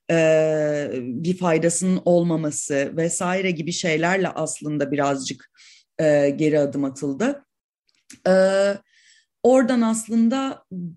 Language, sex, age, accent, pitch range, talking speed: Turkish, female, 30-49, native, 170-225 Hz, 70 wpm